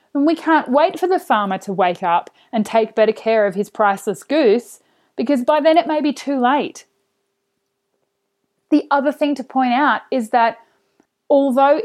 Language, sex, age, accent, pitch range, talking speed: English, female, 30-49, Australian, 210-260 Hz, 175 wpm